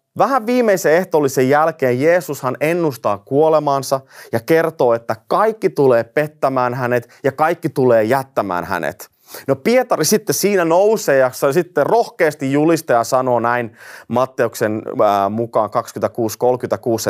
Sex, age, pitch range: male, 30-49, 115-170 Hz